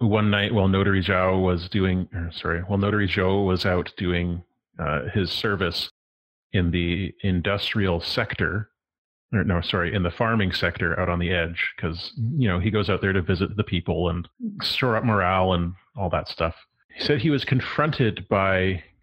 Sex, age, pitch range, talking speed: male, 30-49, 90-110 Hz, 180 wpm